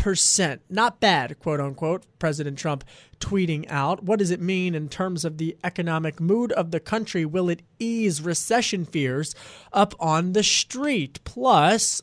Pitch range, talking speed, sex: 150-195 Hz, 160 wpm, male